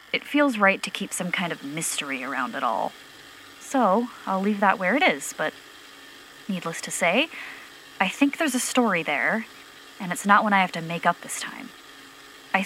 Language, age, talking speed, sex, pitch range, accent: English, 20-39, 195 wpm, female, 170-240 Hz, American